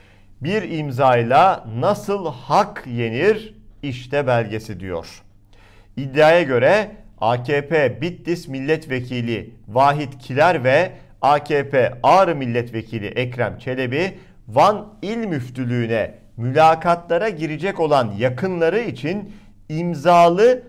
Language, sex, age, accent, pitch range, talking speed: Turkish, male, 50-69, native, 120-175 Hz, 85 wpm